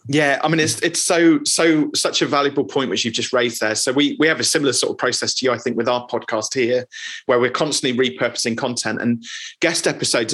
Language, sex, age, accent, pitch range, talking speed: English, male, 30-49, British, 120-150 Hz, 240 wpm